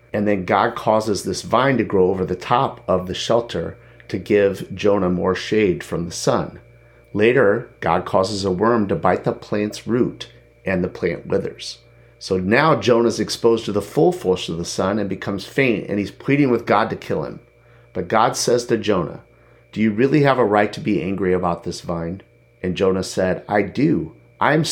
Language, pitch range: English, 95-115 Hz